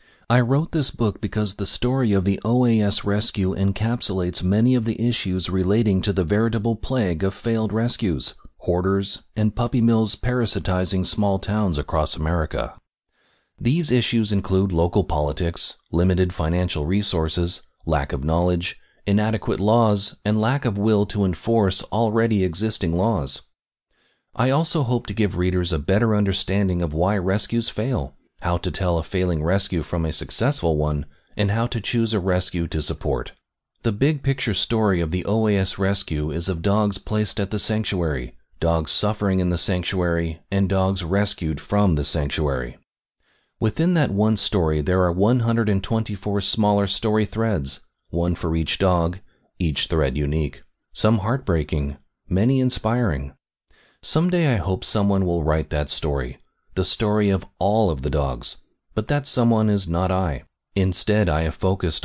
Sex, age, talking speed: male, 40-59, 155 wpm